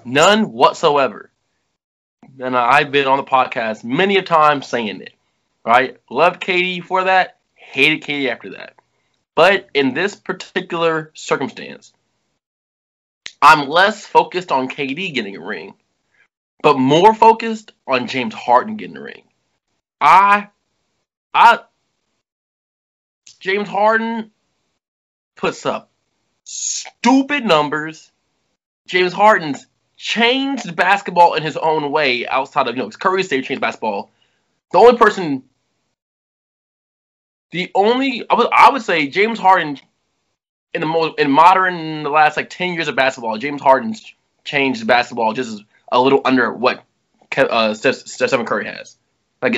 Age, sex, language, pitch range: 20-39, male, English, 135-205 Hz